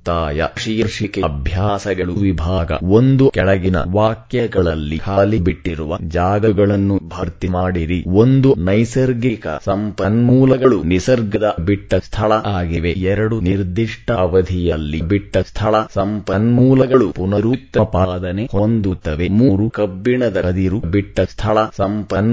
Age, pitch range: 30-49, 90-110 Hz